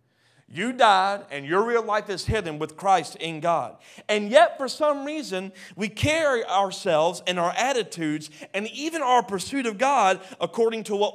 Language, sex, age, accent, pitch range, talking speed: English, male, 40-59, American, 160-245 Hz, 170 wpm